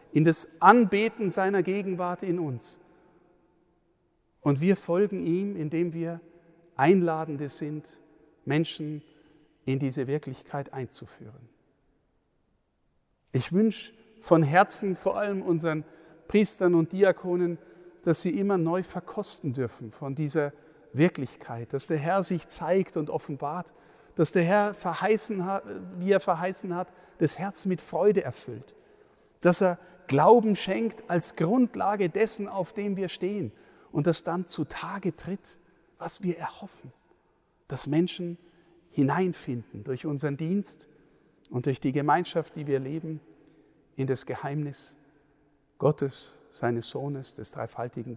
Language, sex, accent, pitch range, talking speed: German, male, German, 130-180 Hz, 125 wpm